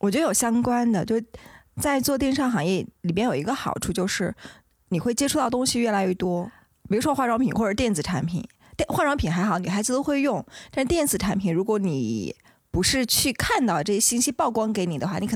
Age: 20-39